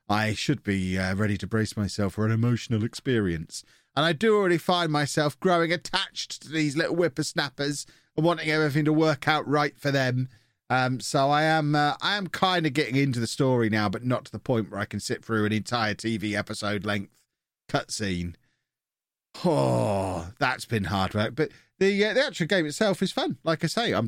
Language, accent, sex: English, British, male